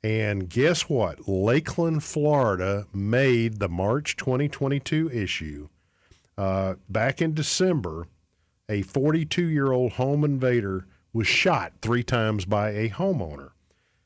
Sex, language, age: male, English, 50-69